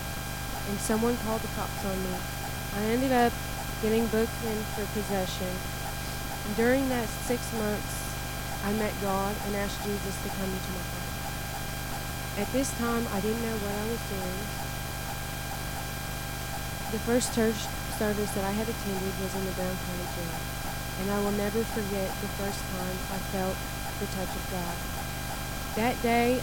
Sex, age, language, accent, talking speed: female, 20-39, English, American, 160 wpm